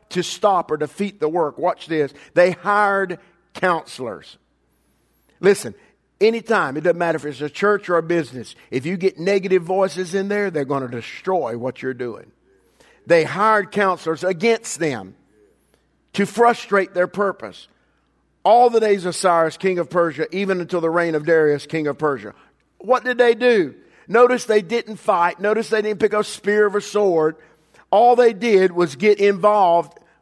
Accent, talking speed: American, 170 wpm